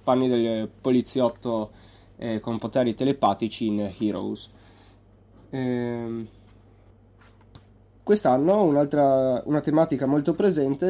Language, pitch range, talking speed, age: Italian, 105-140 Hz, 75 wpm, 20-39